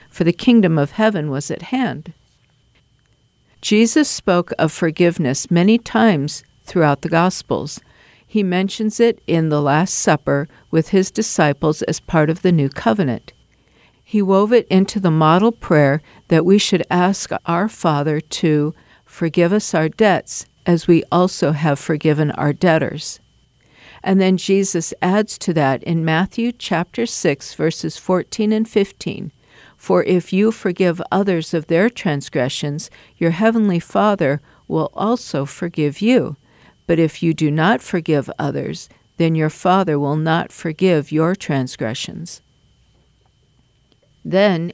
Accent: American